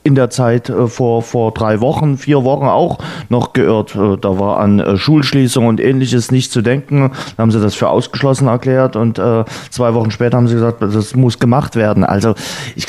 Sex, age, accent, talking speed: male, 30-49, German, 185 wpm